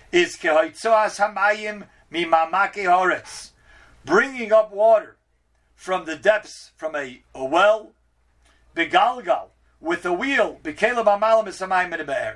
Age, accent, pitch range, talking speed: 50-69, American, 165-230 Hz, 70 wpm